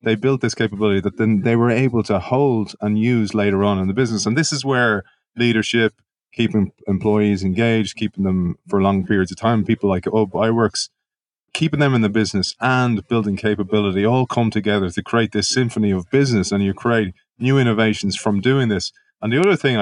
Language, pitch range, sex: English, 100-120 Hz, male